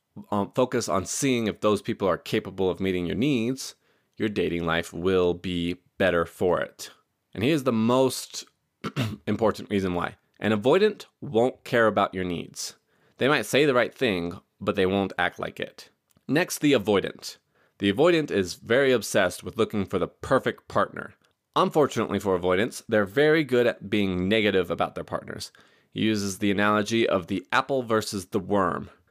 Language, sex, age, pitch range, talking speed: English, male, 20-39, 90-115 Hz, 170 wpm